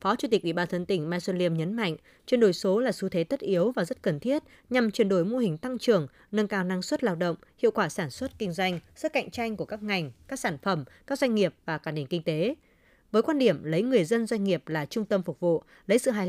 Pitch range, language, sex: 175-235 Hz, Vietnamese, female